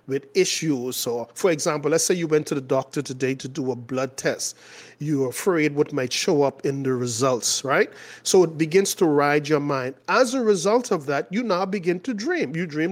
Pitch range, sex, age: 155-225 Hz, male, 40-59